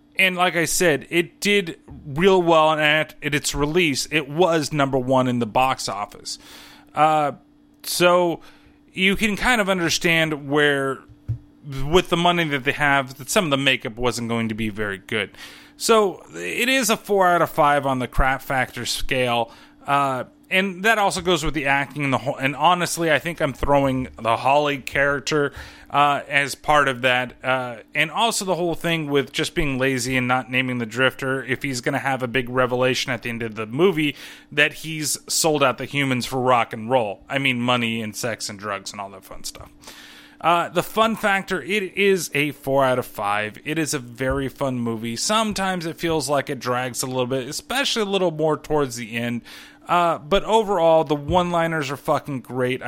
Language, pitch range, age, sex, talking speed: English, 130-170 Hz, 30-49, male, 195 wpm